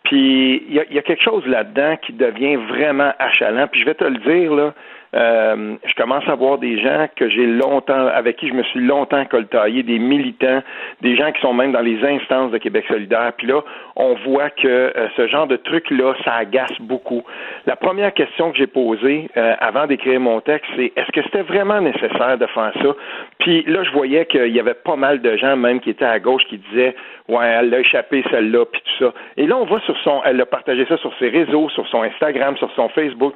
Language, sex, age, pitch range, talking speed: French, male, 50-69, 125-175 Hz, 230 wpm